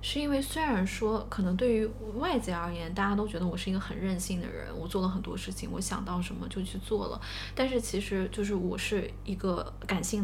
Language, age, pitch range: Chinese, 20-39, 180-235 Hz